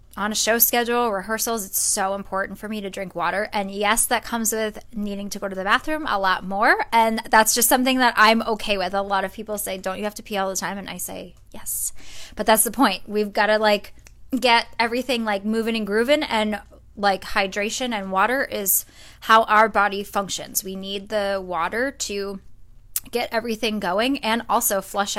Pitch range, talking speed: 195-230 Hz, 205 wpm